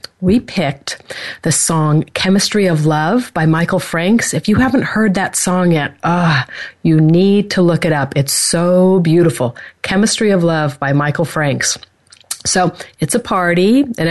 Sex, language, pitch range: female, English, 160-200 Hz